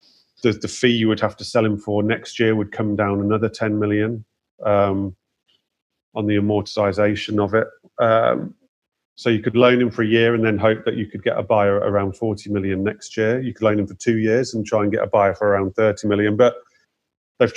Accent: British